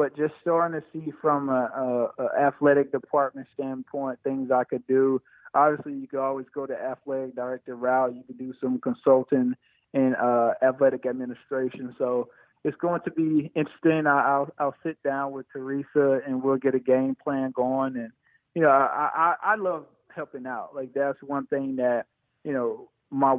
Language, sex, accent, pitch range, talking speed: English, male, American, 130-145 Hz, 180 wpm